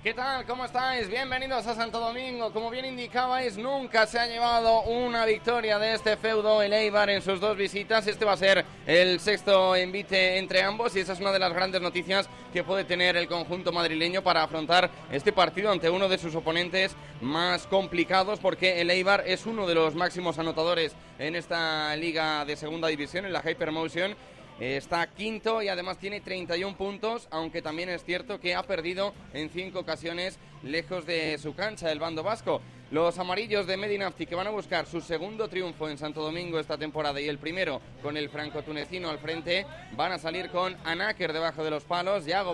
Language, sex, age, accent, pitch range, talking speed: Spanish, male, 20-39, Spanish, 160-195 Hz, 195 wpm